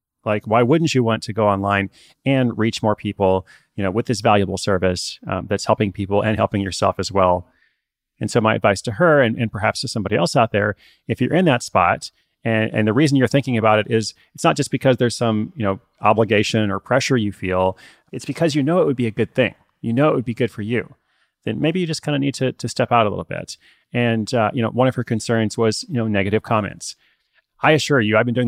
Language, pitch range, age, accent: English, 100-120 Hz, 30-49, American